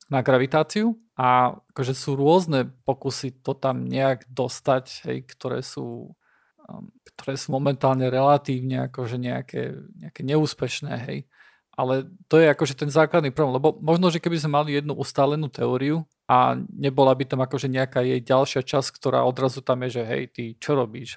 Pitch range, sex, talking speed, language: 130-150 Hz, male, 165 wpm, Slovak